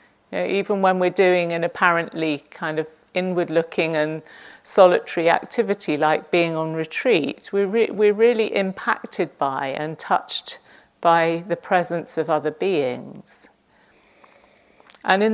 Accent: British